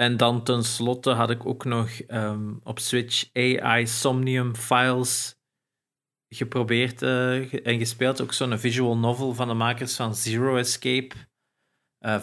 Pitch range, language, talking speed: 110-130 Hz, Dutch, 135 wpm